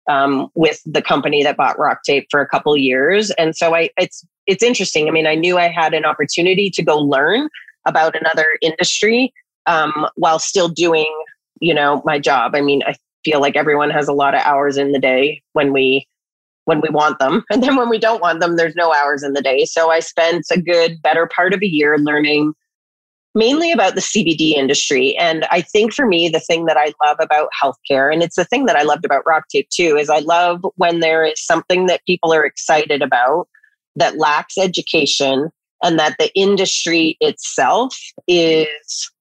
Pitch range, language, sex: 150-180 Hz, English, female